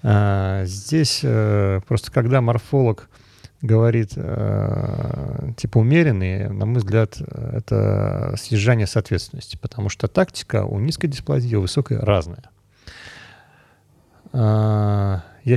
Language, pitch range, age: Russian, 105-135 Hz, 40-59